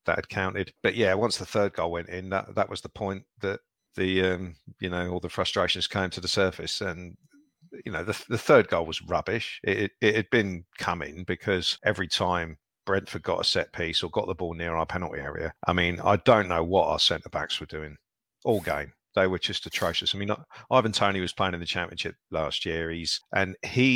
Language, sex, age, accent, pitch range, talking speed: English, male, 50-69, British, 85-105 Hz, 225 wpm